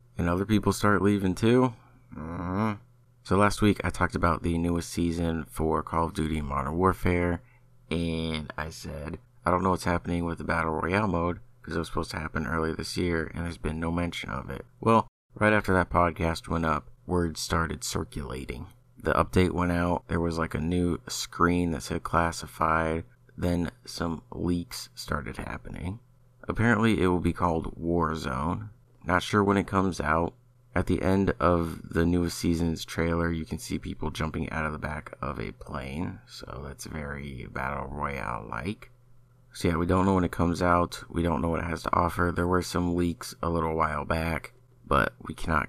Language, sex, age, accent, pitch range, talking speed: English, male, 30-49, American, 80-105 Hz, 190 wpm